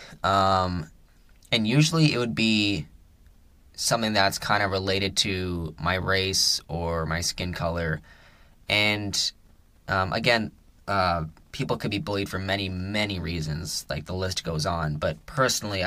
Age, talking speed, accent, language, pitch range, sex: 10-29, 140 wpm, American, English, 80-100 Hz, male